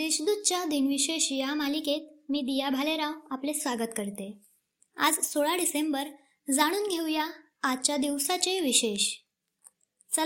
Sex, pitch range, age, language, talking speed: male, 260-315 Hz, 20-39, Marathi, 80 wpm